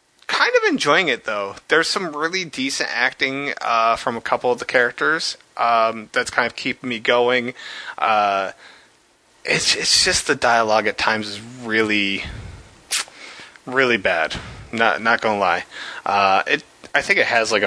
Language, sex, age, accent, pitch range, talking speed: English, male, 20-39, American, 105-145 Hz, 160 wpm